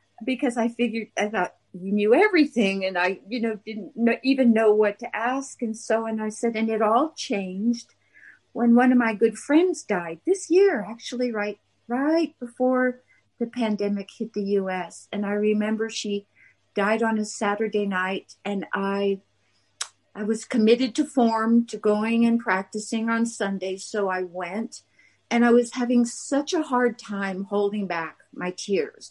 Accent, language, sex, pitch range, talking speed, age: American, English, female, 205-250 Hz, 170 wpm, 50-69